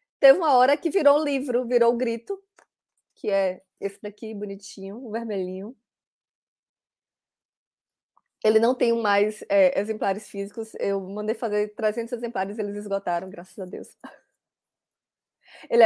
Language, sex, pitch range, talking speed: Portuguese, female, 210-275 Hz, 140 wpm